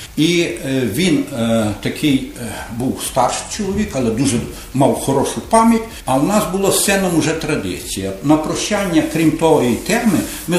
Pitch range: 145-195 Hz